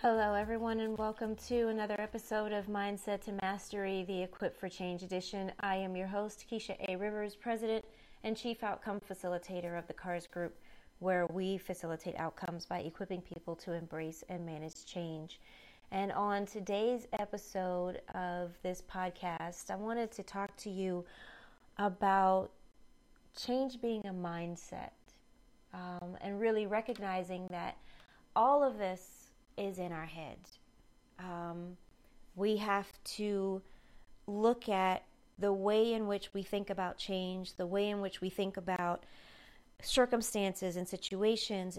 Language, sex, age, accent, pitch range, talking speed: English, female, 30-49, American, 180-215 Hz, 140 wpm